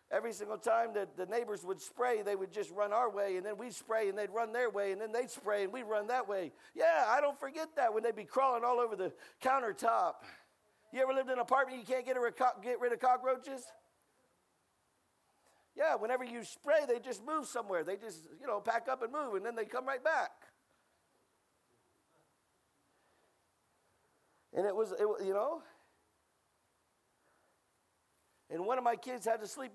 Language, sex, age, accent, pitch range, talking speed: English, male, 50-69, American, 200-255 Hz, 195 wpm